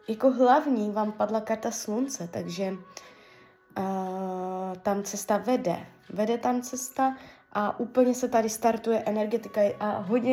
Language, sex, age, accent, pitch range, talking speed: Czech, female, 20-39, native, 200-255 Hz, 130 wpm